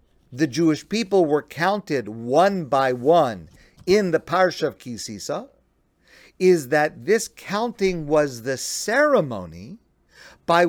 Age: 50-69